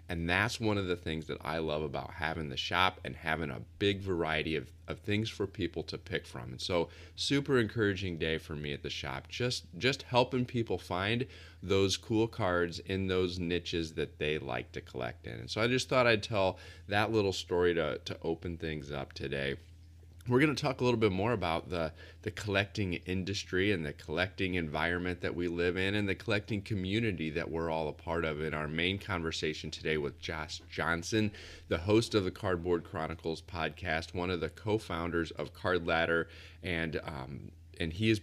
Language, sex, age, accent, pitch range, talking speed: English, male, 30-49, American, 80-95 Hz, 200 wpm